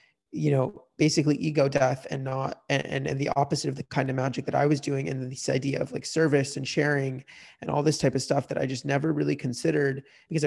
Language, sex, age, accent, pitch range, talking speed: English, male, 30-49, American, 135-145 Hz, 240 wpm